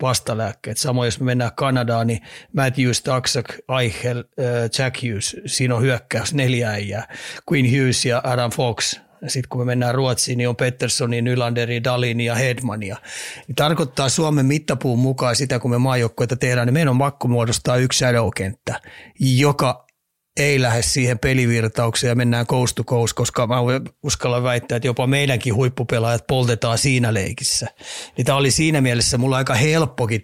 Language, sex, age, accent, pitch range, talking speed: Finnish, male, 30-49, native, 120-130 Hz, 155 wpm